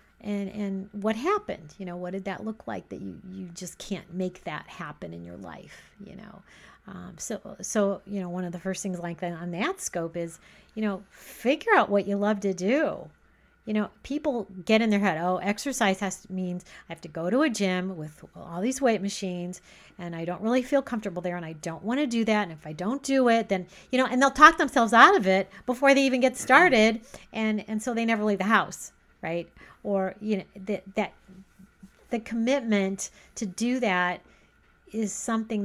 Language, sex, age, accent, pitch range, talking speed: English, female, 40-59, American, 180-220 Hz, 215 wpm